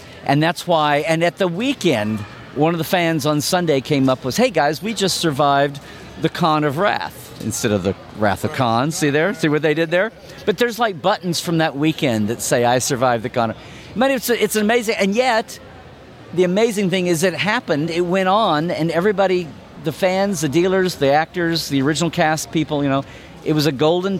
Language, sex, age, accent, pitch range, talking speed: English, male, 50-69, American, 140-180 Hz, 210 wpm